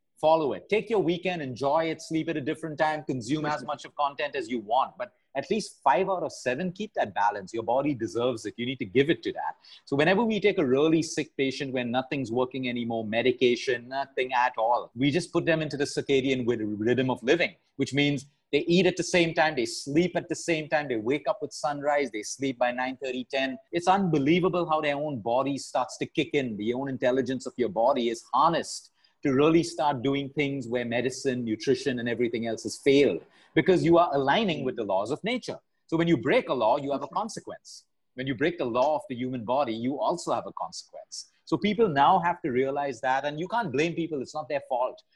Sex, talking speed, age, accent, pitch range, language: male, 230 wpm, 30-49, Indian, 130-160 Hz, English